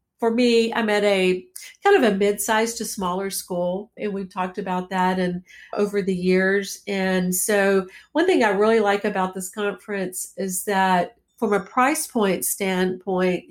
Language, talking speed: English, 170 wpm